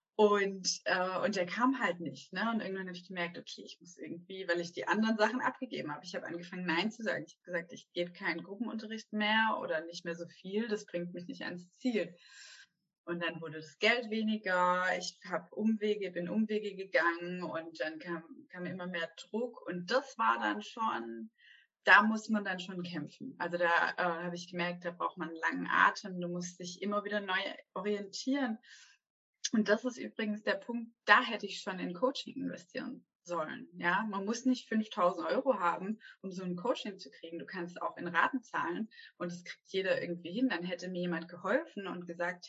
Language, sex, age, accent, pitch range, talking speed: German, female, 20-39, German, 175-220 Hz, 205 wpm